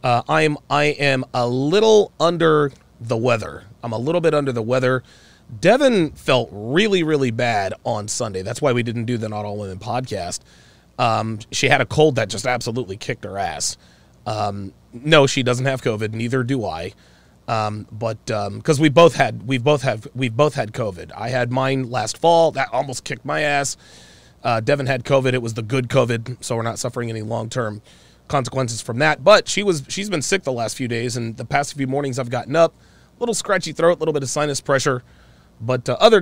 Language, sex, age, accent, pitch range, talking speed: English, male, 30-49, American, 115-145 Hz, 210 wpm